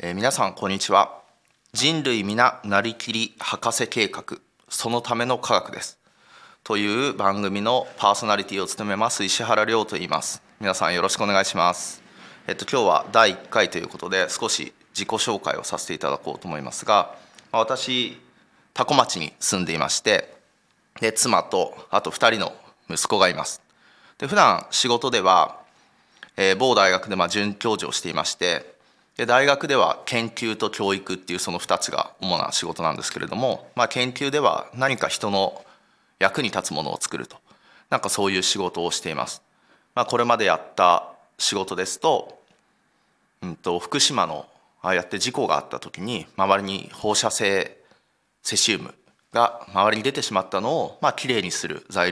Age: 20-39